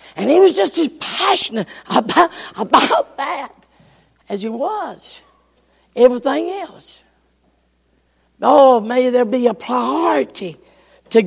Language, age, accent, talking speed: English, 50-69, American, 110 wpm